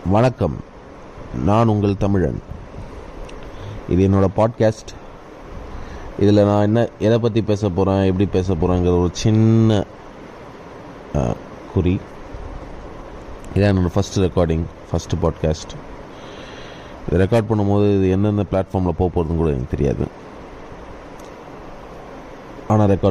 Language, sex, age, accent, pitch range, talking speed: Tamil, male, 20-39, native, 90-115 Hz, 60 wpm